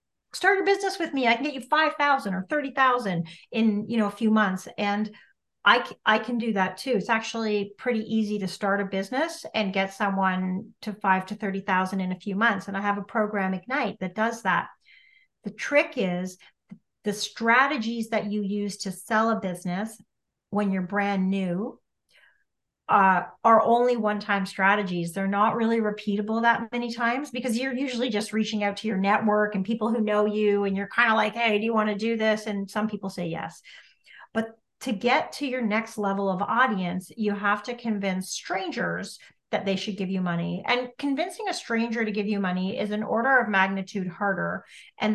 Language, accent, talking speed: English, American, 195 wpm